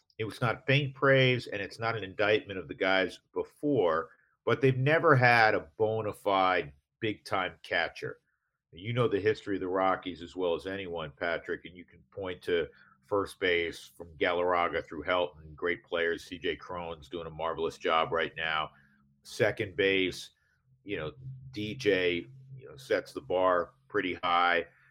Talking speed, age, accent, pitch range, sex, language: 165 wpm, 50-69, American, 85-130 Hz, male, English